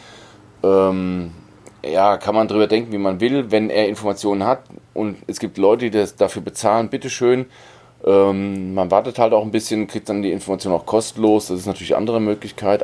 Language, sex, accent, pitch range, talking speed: German, male, German, 100-125 Hz, 190 wpm